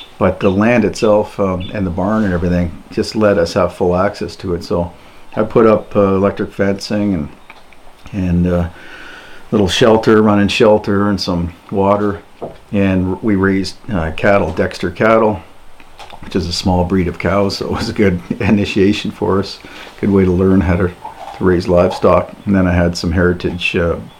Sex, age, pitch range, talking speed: male, 50-69, 90-105 Hz, 185 wpm